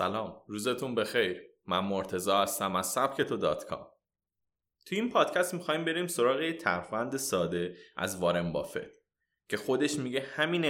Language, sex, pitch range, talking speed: Persian, male, 115-165 Hz, 140 wpm